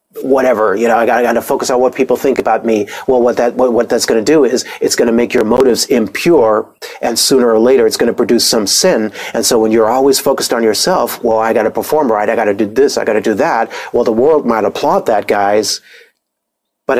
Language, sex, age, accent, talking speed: English, male, 40-59, American, 235 wpm